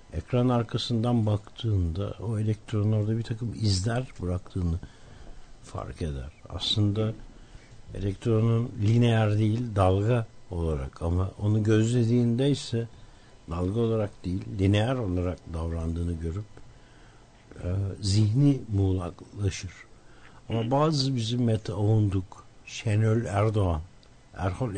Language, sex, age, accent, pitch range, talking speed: Turkish, male, 60-79, native, 95-120 Hz, 95 wpm